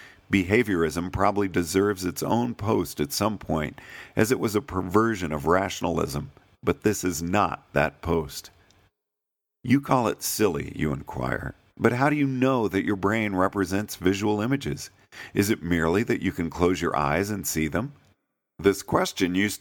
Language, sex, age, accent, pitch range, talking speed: English, male, 50-69, American, 85-115 Hz, 165 wpm